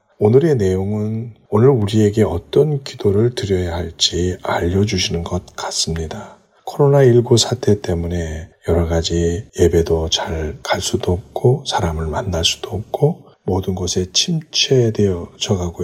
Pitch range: 85-115 Hz